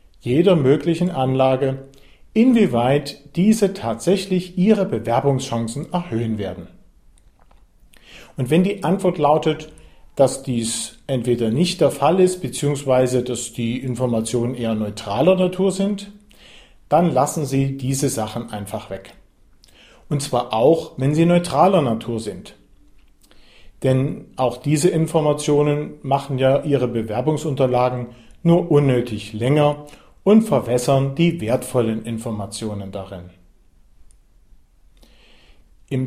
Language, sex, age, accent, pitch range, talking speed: German, male, 40-59, German, 115-150 Hz, 105 wpm